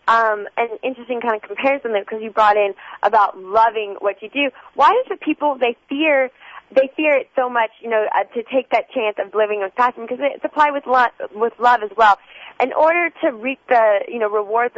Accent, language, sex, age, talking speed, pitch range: American, English, female, 20-39, 215 wpm, 215-270 Hz